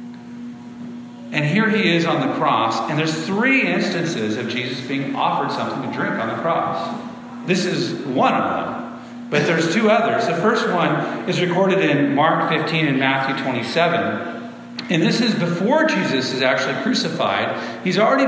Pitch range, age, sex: 135-205 Hz, 40-59, male